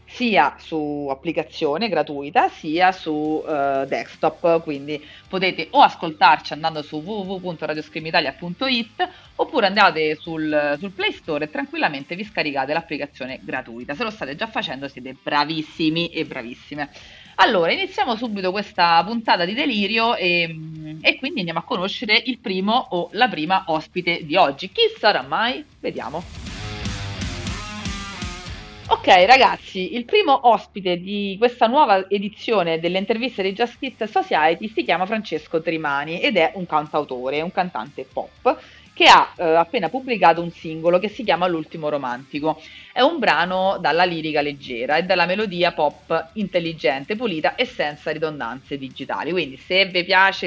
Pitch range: 150-205 Hz